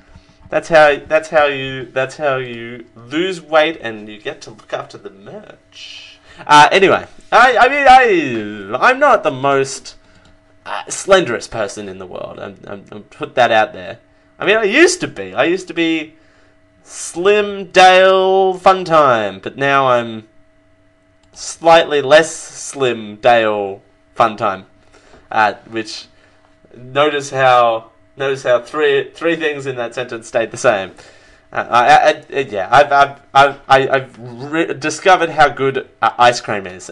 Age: 20-39